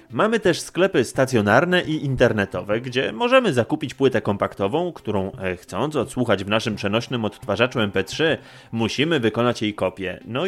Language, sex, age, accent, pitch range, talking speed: Polish, male, 30-49, native, 110-155 Hz, 140 wpm